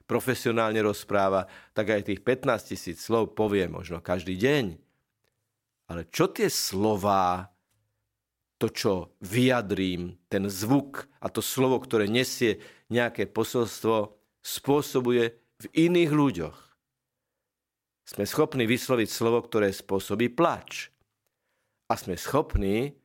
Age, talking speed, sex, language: 50-69, 110 wpm, male, Slovak